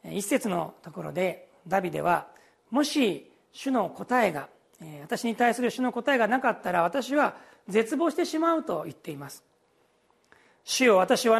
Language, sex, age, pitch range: Japanese, male, 40-59, 190-265 Hz